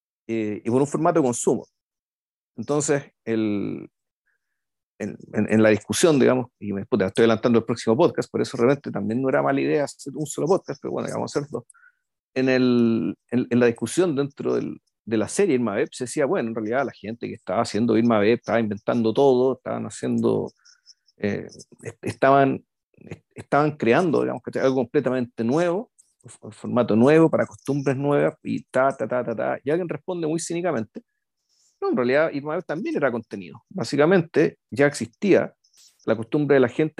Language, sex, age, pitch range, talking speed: Spanish, male, 50-69, 115-150 Hz, 175 wpm